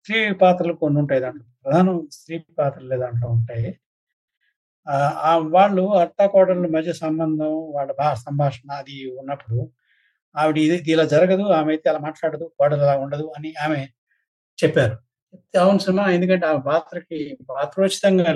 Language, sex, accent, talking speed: Telugu, male, native, 120 wpm